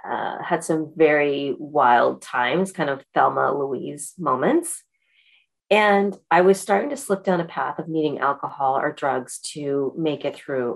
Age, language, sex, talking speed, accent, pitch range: 30-49, English, female, 160 wpm, American, 145-175 Hz